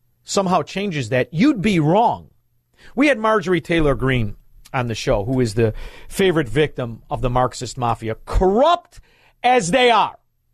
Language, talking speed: English, 155 wpm